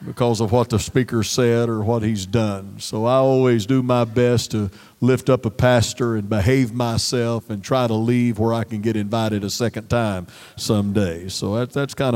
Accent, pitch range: American, 110-135 Hz